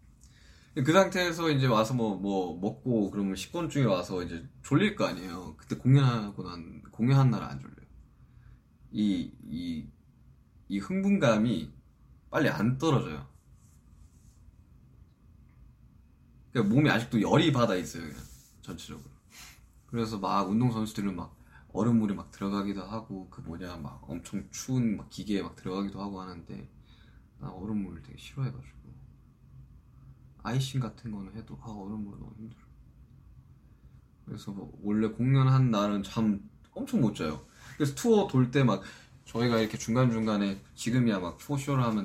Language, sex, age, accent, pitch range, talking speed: English, male, 20-39, Korean, 95-120 Hz, 125 wpm